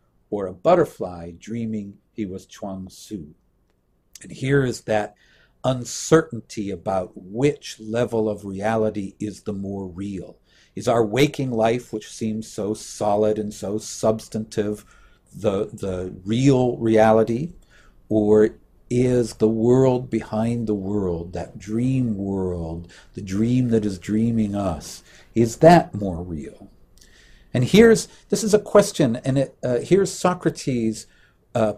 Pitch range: 100-130 Hz